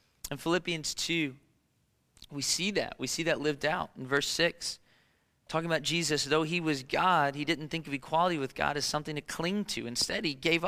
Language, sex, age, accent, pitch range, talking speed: English, male, 30-49, American, 145-200 Hz, 200 wpm